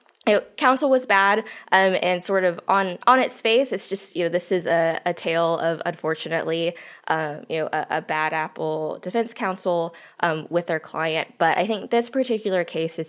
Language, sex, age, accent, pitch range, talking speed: English, female, 20-39, American, 160-200 Hz, 200 wpm